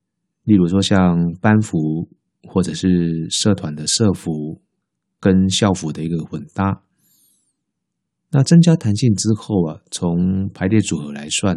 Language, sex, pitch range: Chinese, male, 85-105 Hz